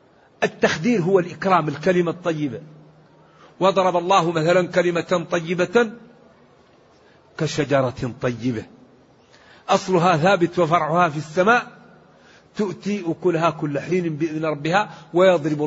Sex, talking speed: male, 90 wpm